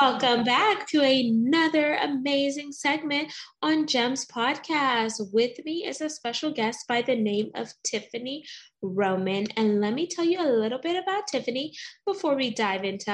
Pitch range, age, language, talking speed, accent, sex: 210-275 Hz, 20-39, English, 160 wpm, American, female